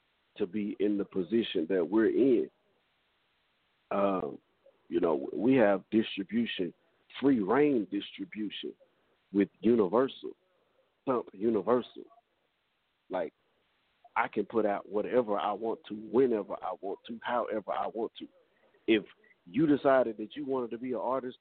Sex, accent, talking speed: male, American, 130 wpm